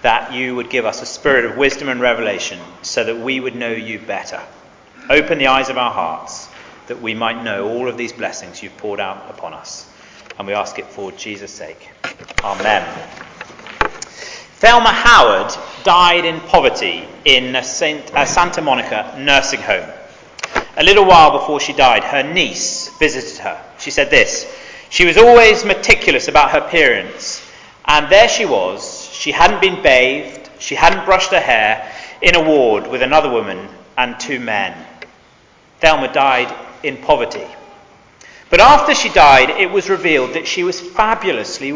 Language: English